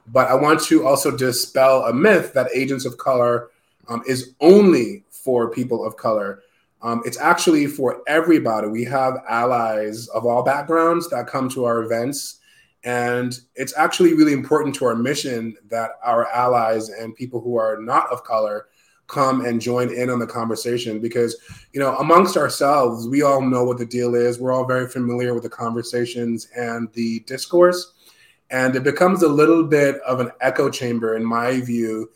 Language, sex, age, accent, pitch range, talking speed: English, male, 20-39, American, 115-135 Hz, 175 wpm